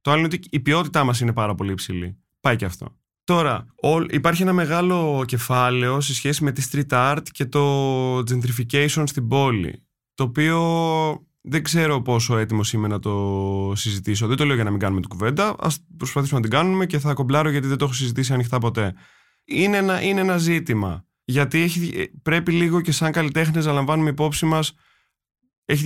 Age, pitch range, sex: 20-39, 105-150 Hz, male